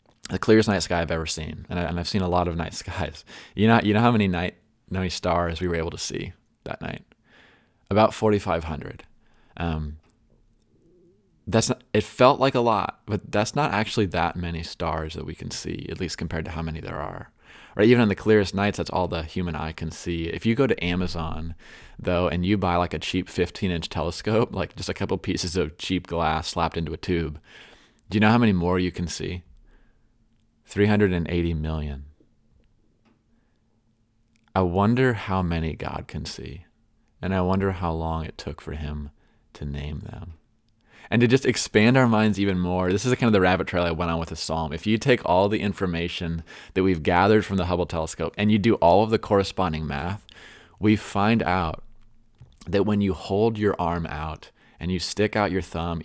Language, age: English, 20-39